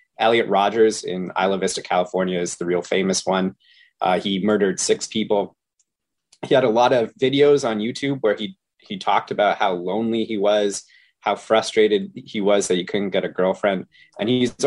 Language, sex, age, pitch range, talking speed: English, male, 30-49, 90-110 Hz, 185 wpm